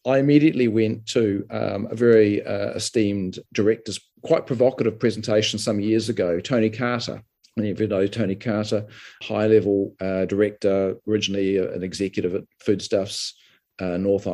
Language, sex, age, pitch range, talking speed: English, male, 40-59, 100-120 Hz, 140 wpm